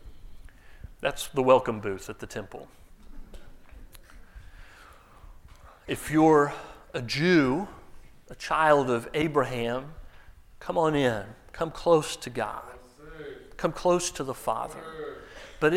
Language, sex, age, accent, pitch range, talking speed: English, male, 40-59, American, 110-160 Hz, 105 wpm